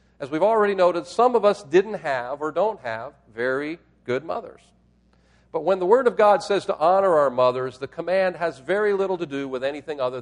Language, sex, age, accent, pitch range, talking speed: English, male, 50-69, American, 100-160 Hz, 210 wpm